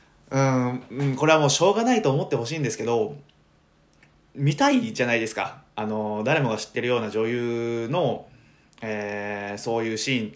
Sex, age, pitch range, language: male, 20-39, 110-145 Hz, Japanese